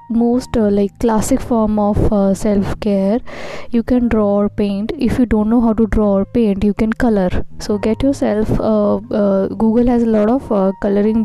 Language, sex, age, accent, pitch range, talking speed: English, female, 20-39, Indian, 200-235 Hz, 200 wpm